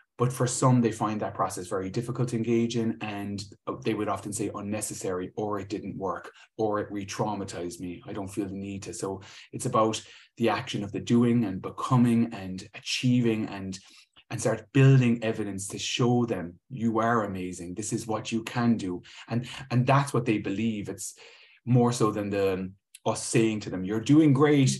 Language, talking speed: English, 195 wpm